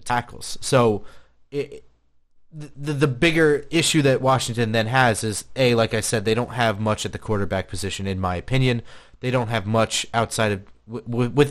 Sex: male